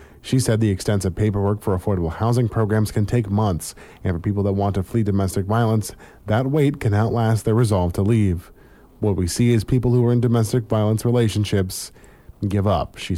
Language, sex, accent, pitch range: English, male, American, 95-115 Hz